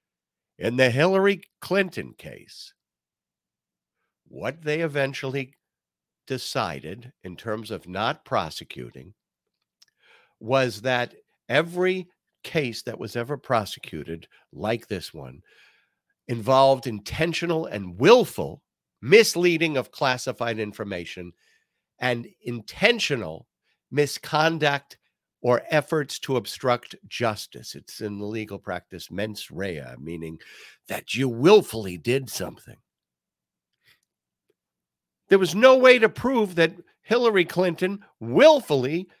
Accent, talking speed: American, 100 wpm